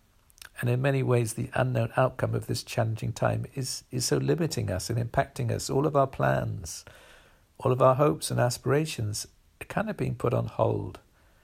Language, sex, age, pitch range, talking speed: English, male, 50-69, 90-130 Hz, 190 wpm